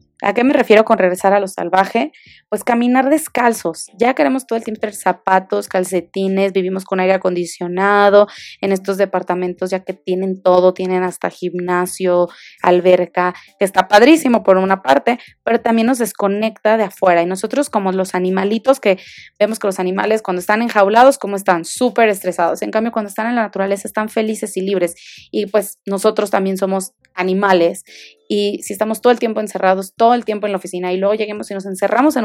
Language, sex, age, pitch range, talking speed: Spanish, female, 20-39, 185-220 Hz, 190 wpm